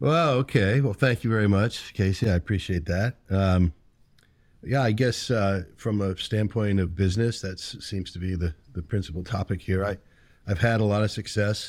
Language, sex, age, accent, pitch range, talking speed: English, male, 50-69, American, 95-110 Hz, 185 wpm